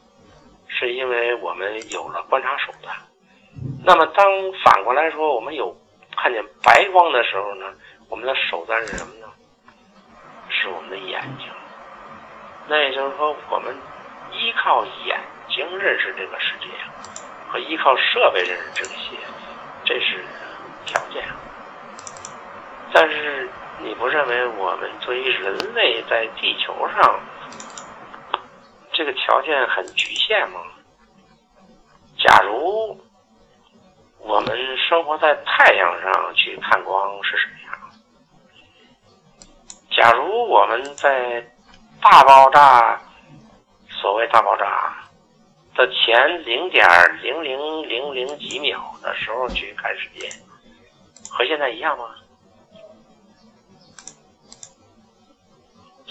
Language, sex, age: Chinese, male, 50-69